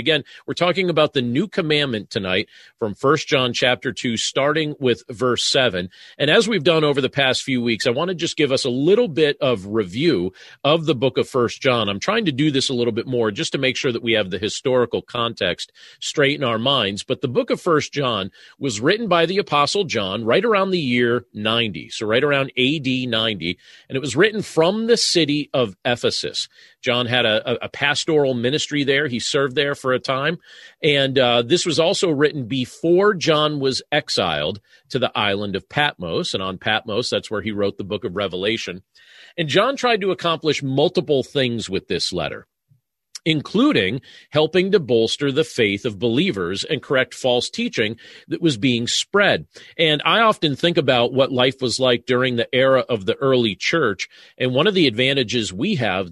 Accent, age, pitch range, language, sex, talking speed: American, 40-59, 120-155 Hz, English, male, 200 wpm